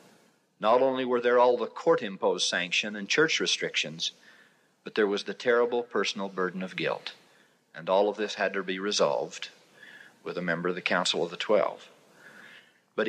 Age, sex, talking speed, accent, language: 50-69, male, 175 wpm, American, English